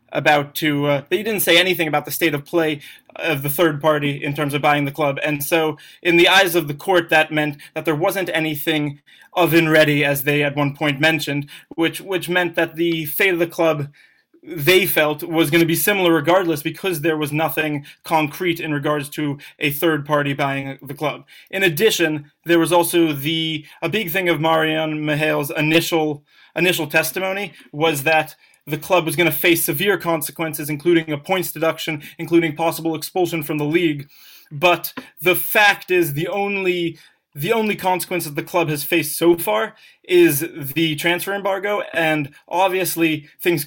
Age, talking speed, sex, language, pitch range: 20-39, 185 wpm, male, English, 150-175 Hz